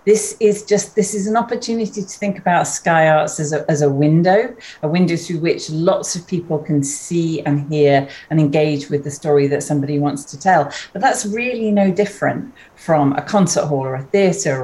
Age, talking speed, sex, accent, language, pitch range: 40-59, 200 wpm, female, British, English, 150-190 Hz